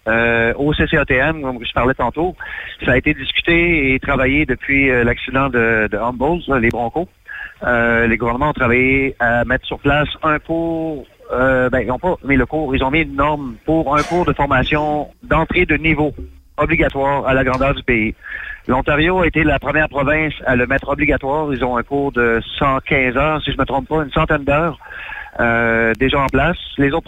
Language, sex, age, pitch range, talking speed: French, male, 40-59, 120-150 Hz, 200 wpm